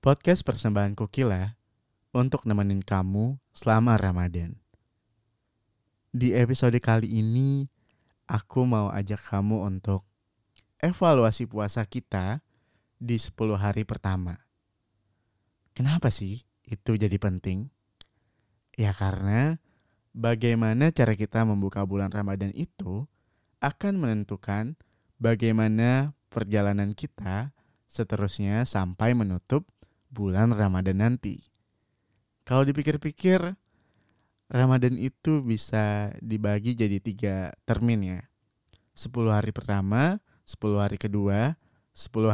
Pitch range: 100-120 Hz